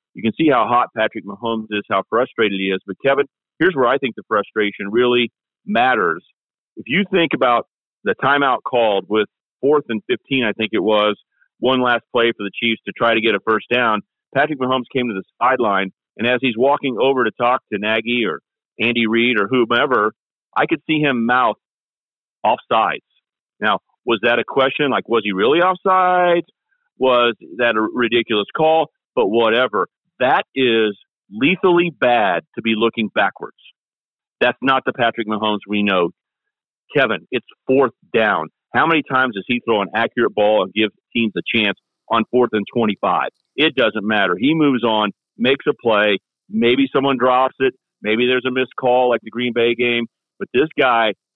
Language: English